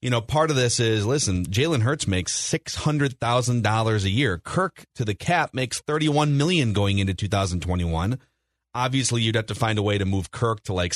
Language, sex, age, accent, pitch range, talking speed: English, male, 30-49, American, 105-140 Hz, 230 wpm